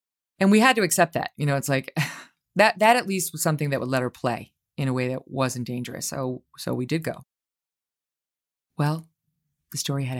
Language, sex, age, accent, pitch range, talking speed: English, female, 30-49, American, 130-170 Hz, 210 wpm